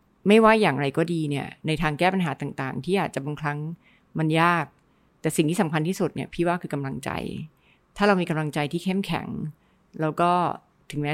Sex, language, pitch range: female, Thai, 145-180 Hz